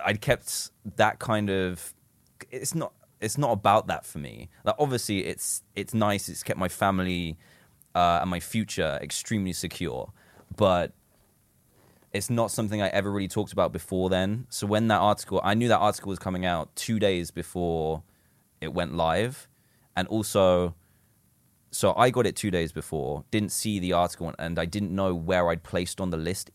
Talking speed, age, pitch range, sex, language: 180 wpm, 20-39, 85-110 Hz, male, English